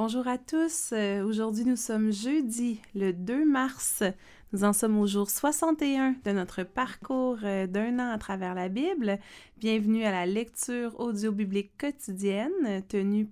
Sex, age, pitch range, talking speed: female, 30-49, 200-245 Hz, 145 wpm